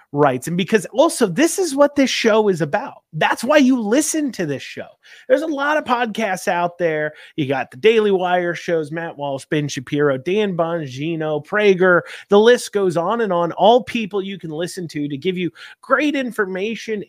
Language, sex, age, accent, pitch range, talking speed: English, male, 30-49, American, 155-215 Hz, 195 wpm